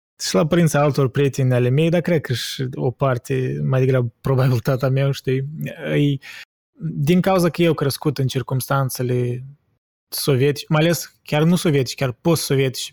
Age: 20-39